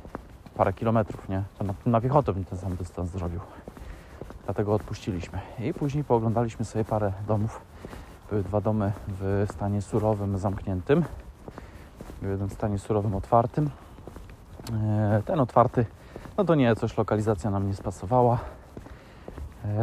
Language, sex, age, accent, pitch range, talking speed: Polish, male, 20-39, native, 100-120 Hz, 130 wpm